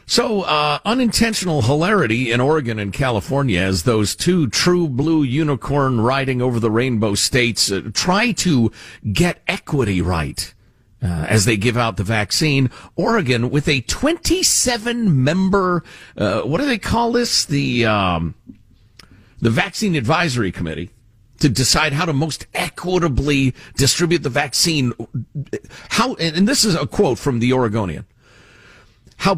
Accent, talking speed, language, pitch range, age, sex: American, 140 wpm, English, 110-165 Hz, 50-69, male